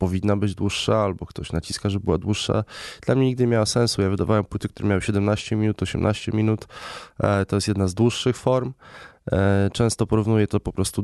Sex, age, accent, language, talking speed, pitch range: male, 20-39, native, Polish, 190 wpm, 95-110 Hz